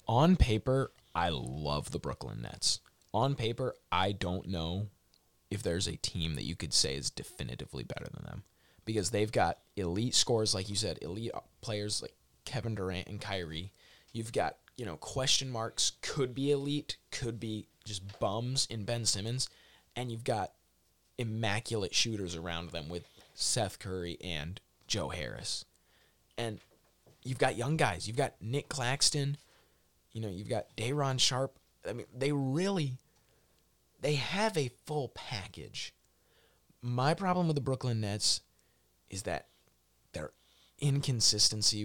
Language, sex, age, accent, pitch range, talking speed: English, male, 20-39, American, 90-125 Hz, 150 wpm